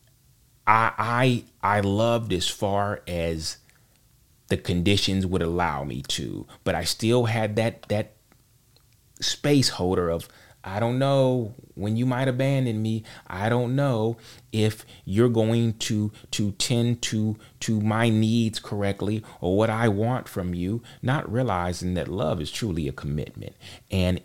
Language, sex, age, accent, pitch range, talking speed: English, male, 30-49, American, 90-125 Hz, 145 wpm